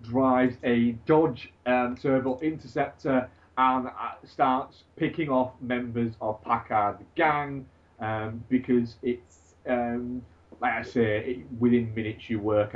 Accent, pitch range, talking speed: British, 105-130 Hz, 120 wpm